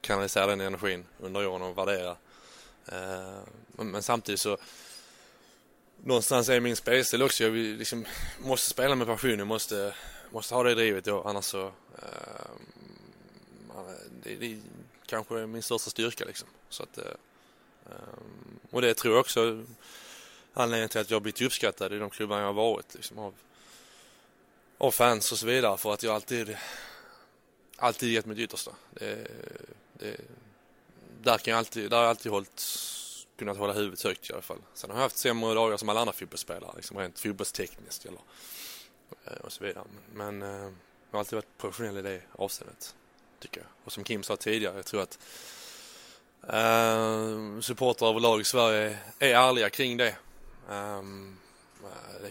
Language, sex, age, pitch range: English, male, 20-39, 100-115 Hz